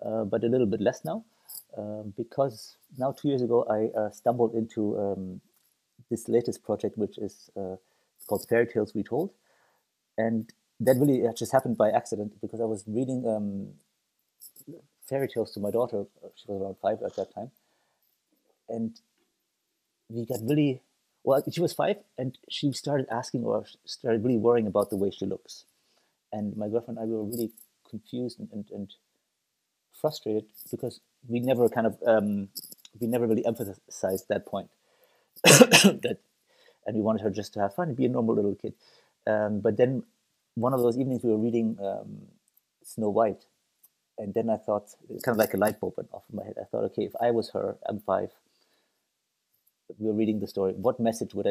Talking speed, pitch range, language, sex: 185 wpm, 110-130 Hz, English, male